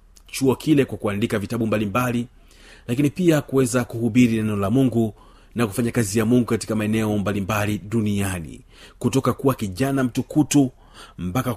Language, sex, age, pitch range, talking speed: Swahili, male, 40-59, 105-130 Hz, 140 wpm